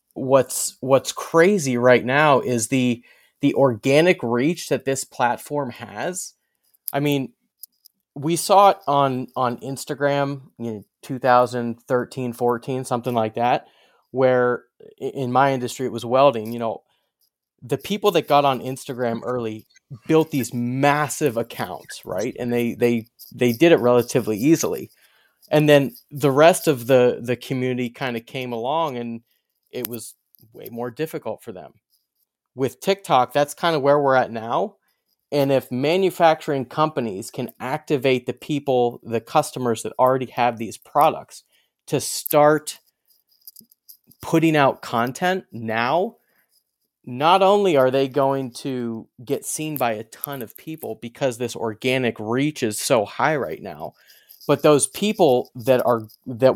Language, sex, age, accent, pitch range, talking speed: English, male, 30-49, American, 120-145 Hz, 145 wpm